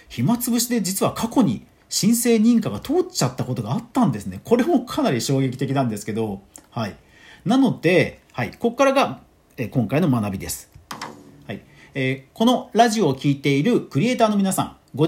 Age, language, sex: 40-59, Japanese, male